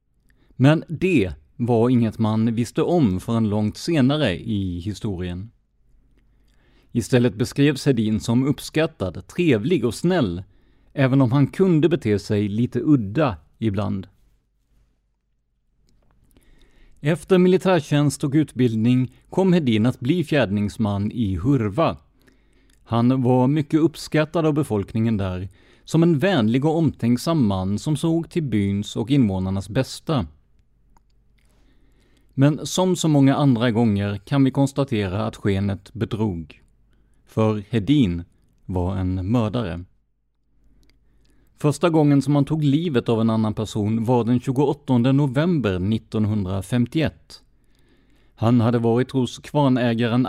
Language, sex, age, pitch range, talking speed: English, male, 30-49, 105-145 Hz, 115 wpm